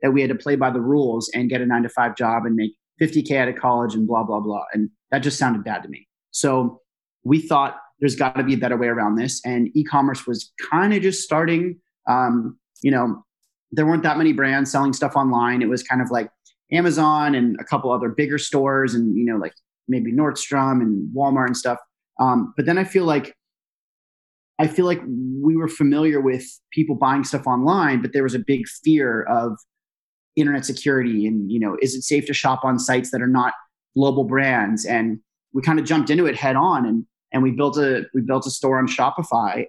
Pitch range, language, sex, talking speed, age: 125-145 Hz, English, male, 220 wpm, 30-49